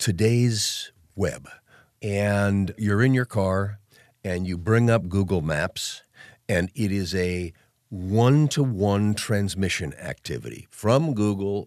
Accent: American